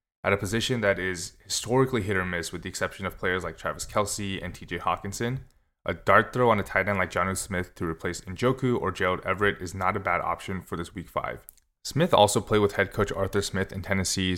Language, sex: English, male